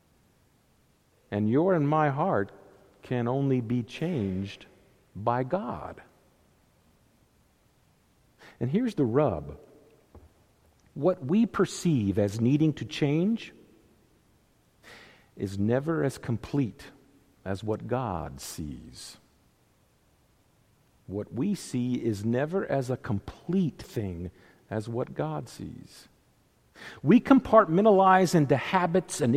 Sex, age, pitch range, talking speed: male, 50-69, 110-160 Hz, 100 wpm